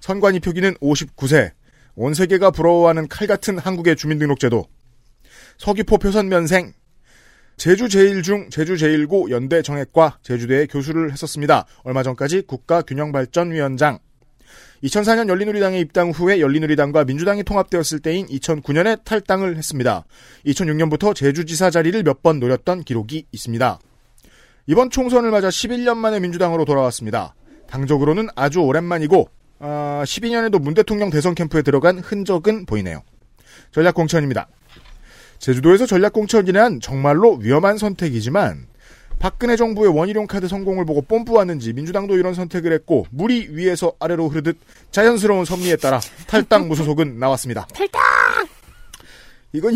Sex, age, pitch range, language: male, 40-59, 145-195 Hz, Korean